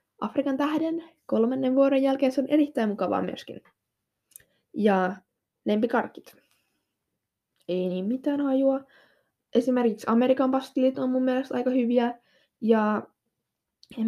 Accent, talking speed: native, 110 wpm